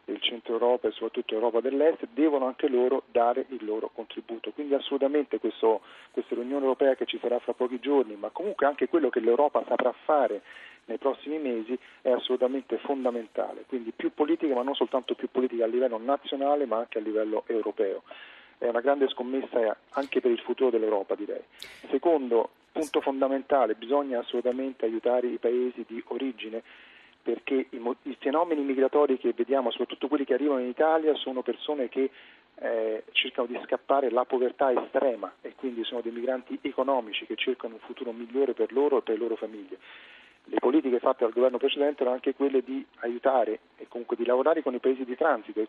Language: Italian